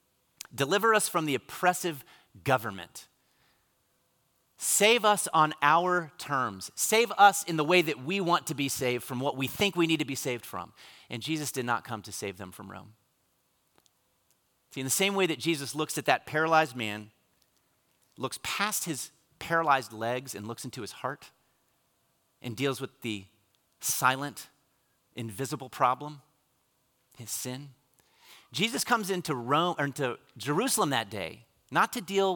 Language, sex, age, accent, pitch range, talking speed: English, male, 30-49, American, 115-160 Hz, 160 wpm